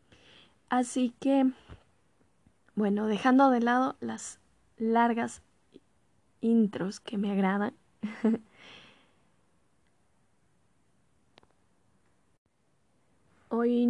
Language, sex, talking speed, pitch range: Spanish, female, 55 wpm, 220-270 Hz